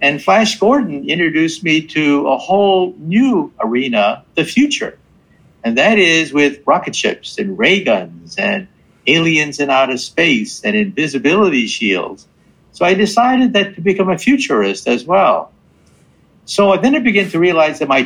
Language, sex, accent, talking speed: English, male, American, 155 wpm